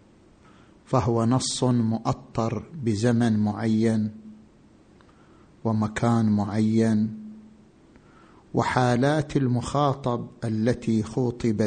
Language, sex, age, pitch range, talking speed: Arabic, male, 50-69, 115-130 Hz, 55 wpm